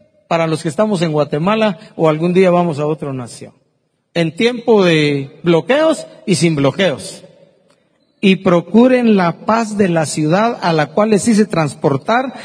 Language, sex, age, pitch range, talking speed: Spanish, male, 50-69, 150-210 Hz, 160 wpm